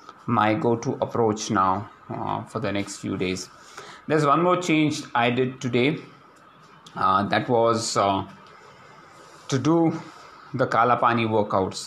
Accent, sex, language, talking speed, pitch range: Indian, male, English, 130 wpm, 110-155 Hz